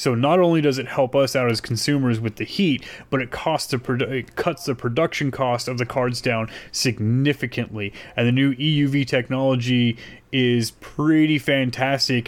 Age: 30-49